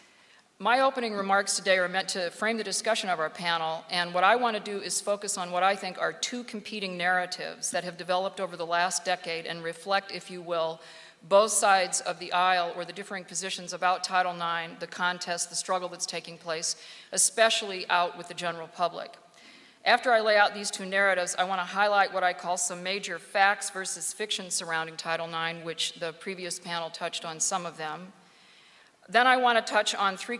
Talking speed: 205 wpm